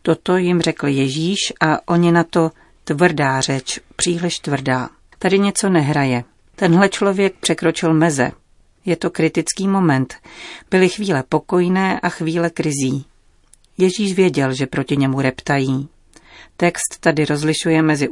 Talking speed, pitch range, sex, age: 130 wpm, 145-175 Hz, female, 40-59